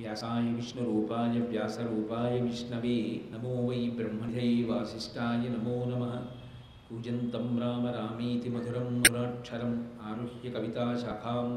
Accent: native